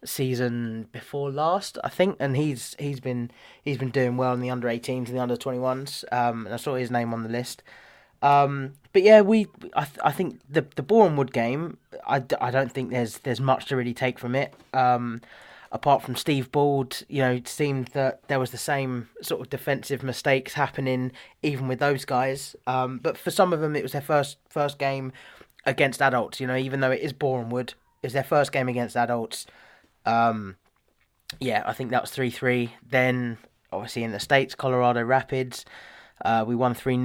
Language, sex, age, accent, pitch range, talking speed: English, male, 20-39, British, 120-140 Hz, 200 wpm